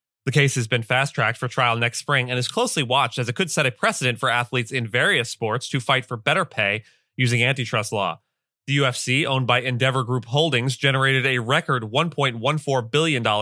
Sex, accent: male, American